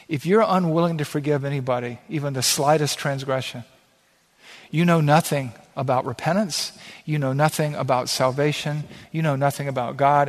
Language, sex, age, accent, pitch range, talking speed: English, male, 50-69, American, 130-160 Hz, 145 wpm